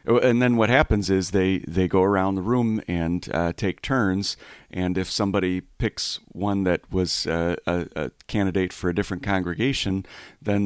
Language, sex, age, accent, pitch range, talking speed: English, male, 40-59, American, 90-105 Hz, 175 wpm